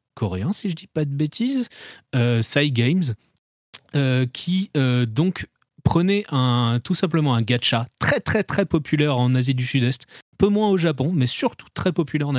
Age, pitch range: 30-49, 125-165 Hz